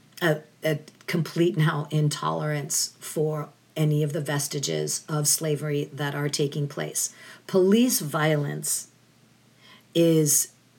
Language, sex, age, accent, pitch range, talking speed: English, female, 50-69, American, 145-165 Hz, 105 wpm